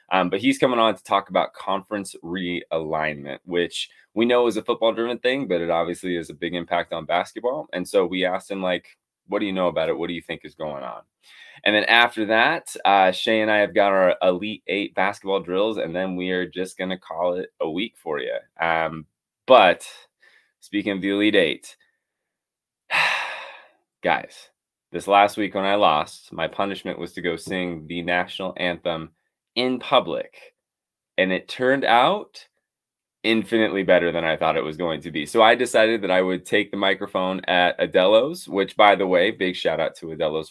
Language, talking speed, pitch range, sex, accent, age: English, 195 wpm, 85-105 Hz, male, American, 20-39